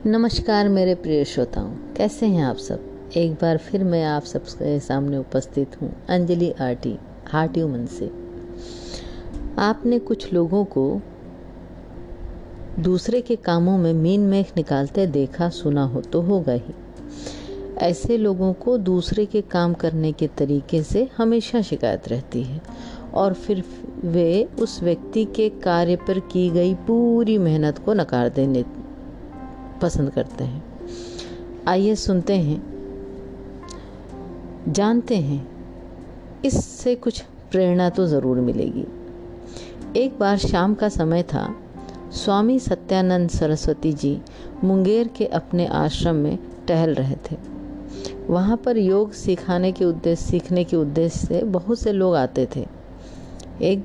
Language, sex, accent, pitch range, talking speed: Hindi, female, native, 130-195 Hz, 125 wpm